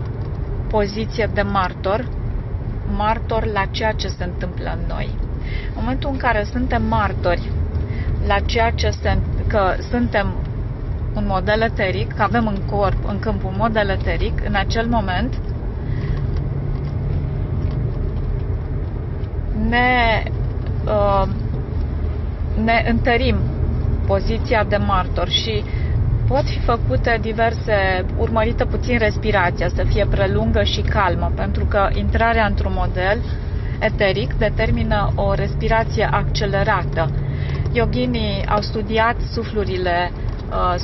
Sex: female